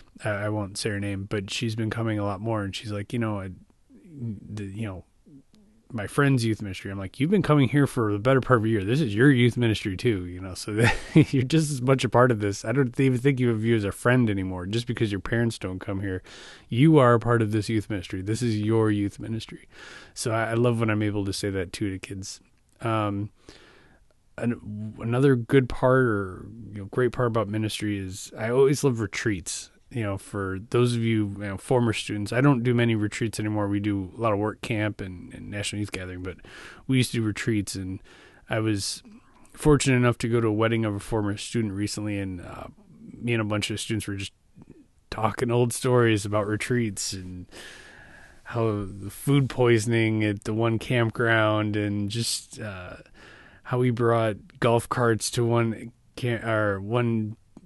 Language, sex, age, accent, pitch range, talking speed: English, male, 20-39, American, 100-120 Hz, 210 wpm